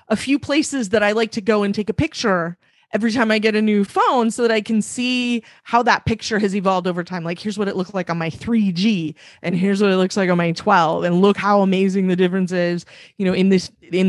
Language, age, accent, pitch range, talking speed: English, 30-49, American, 175-220 Hz, 255 wpm